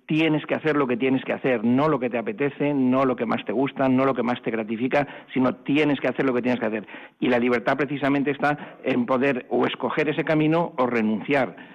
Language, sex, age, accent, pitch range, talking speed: Spanish, male, 50-69, Spanish, 120-140 Hz, 240 wpm